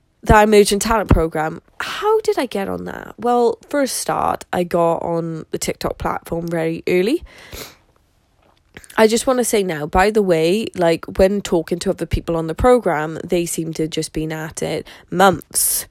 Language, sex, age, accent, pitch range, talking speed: English, female, 10-29, British, 160-210 Hz, 185 wpm